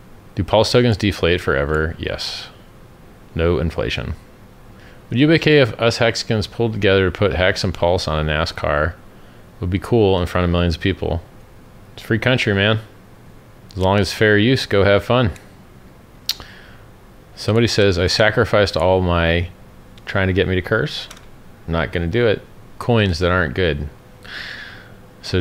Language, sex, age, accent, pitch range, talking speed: English, male, 30-49, American, 85-105 Hz, 170 wpm